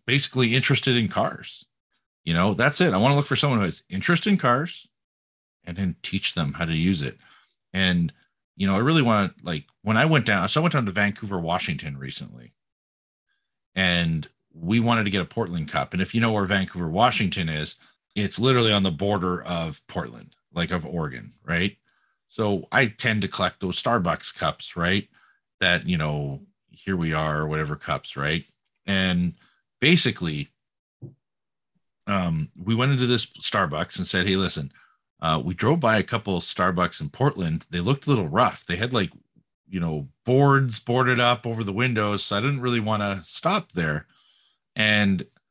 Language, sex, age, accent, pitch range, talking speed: English, male, 40-59, American, 90-120 Hz, 185 wpm